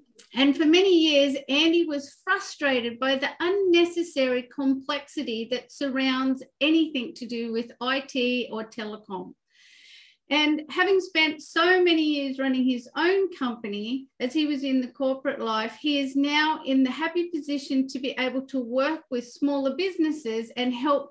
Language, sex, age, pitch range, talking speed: English, female, 40-59, 250-305 Hz, 155 wpm